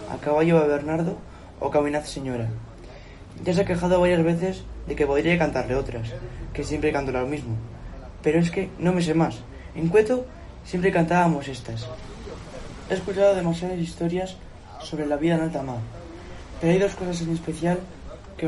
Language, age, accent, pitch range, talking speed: Spanish, 20-39, Spanish, 125-170 Hz, 170 wpm